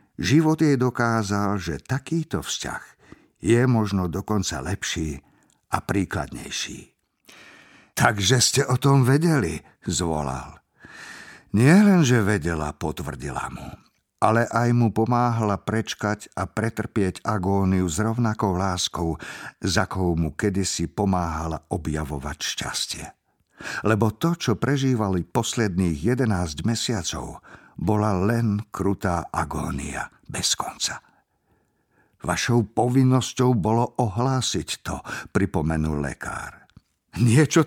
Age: 50-69